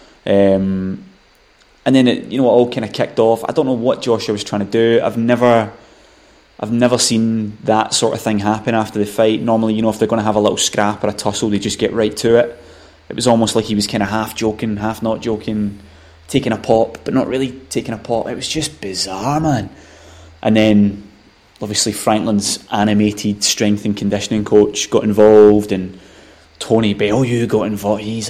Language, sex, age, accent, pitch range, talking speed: English, male, 20-39, British, 100-120 Hz, 210 wpm